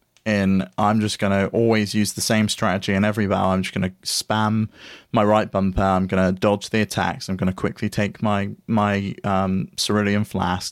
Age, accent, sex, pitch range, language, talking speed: 30-49, British, male, 100-125 Hz, English, 185 wpm